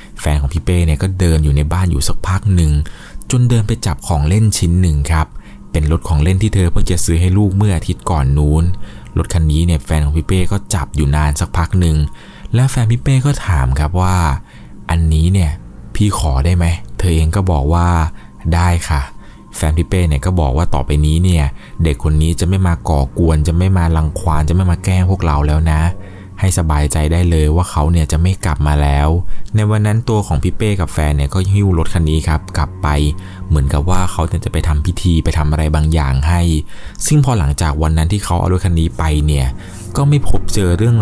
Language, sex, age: Thai, male, 20-39